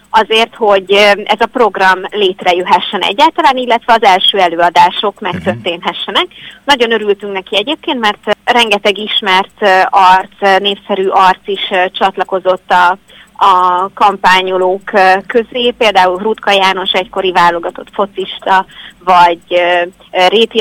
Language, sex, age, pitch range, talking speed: Hungarian, female, 30-49, 185-210 Hz, 105 wpm